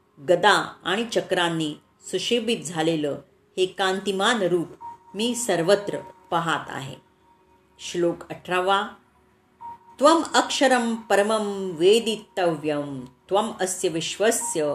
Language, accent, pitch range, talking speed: Marathi, native, 160-225 Hz, 55 wpm